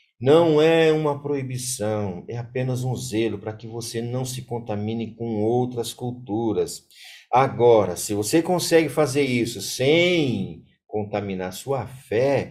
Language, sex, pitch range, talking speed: Portuguese, male, 105-145 Hz, 130 wpm